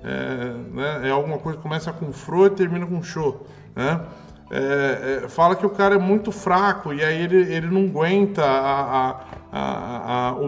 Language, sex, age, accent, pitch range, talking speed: Portuguese, male, 20-39, Brazilian, 140-200 Hz, 200 wpm